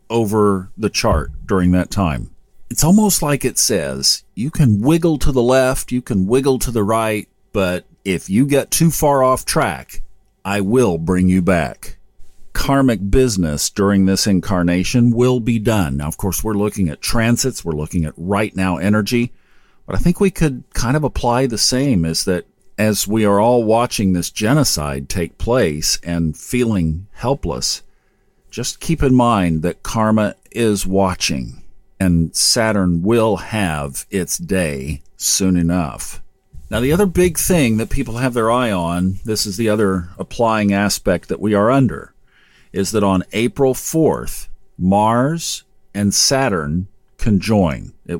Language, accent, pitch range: English, American, 95-125 Hz